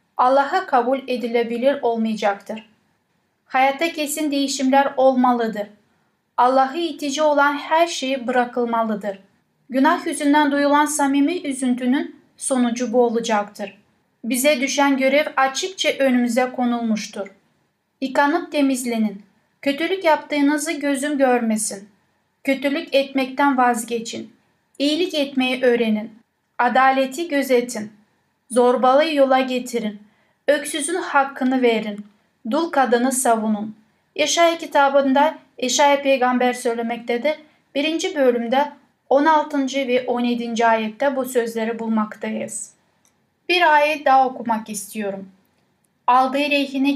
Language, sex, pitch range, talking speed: Turkish, female, 235-290 Hz, 90 wpm